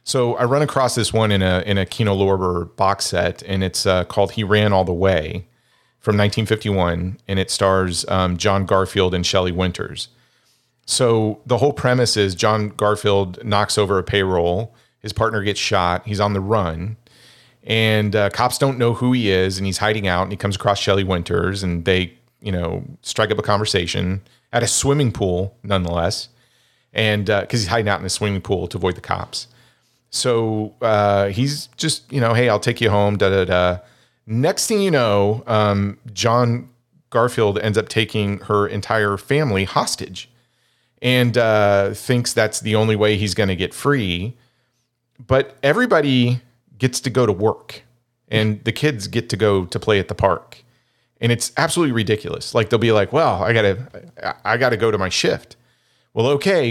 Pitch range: 100-120 Hz